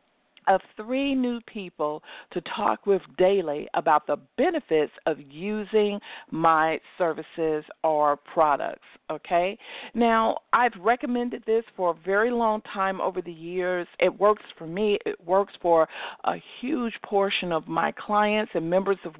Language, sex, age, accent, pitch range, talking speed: English, female, 50-69, American, 175-240 Hz, 145 wpm